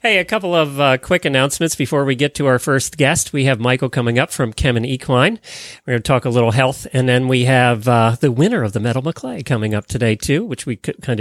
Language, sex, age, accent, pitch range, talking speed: English, male, 40-59, American, 130-180 Hz, 255 wpm